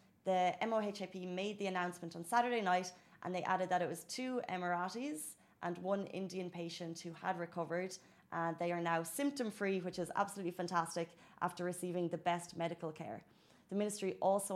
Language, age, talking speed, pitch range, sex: Arabic, 30-49, 170 wpm, 170-190 Hz, female